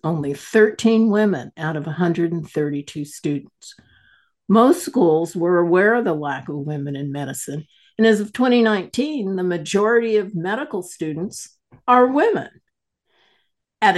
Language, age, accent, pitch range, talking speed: English, 60-79, American, 160-215 Hz, 130 wpm